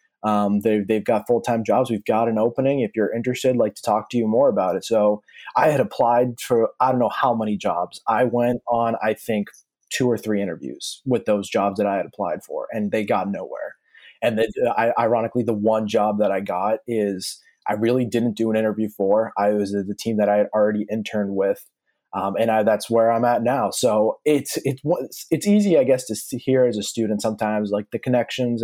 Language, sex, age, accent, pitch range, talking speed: English, male, 20-39, American, 105-120 Hz, 220 wpm